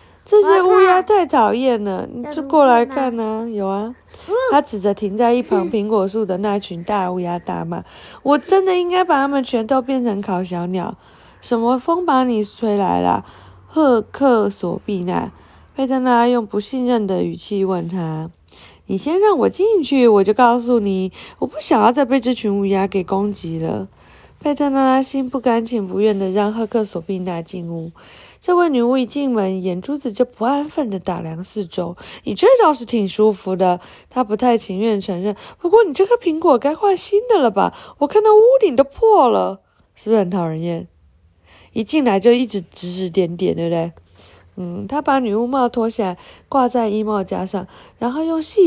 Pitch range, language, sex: 185-275 Hz, Chinese, female